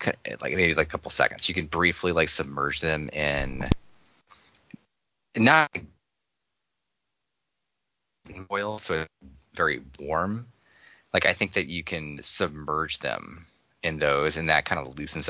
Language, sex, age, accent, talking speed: English, male, 30-49, American, 130 wpm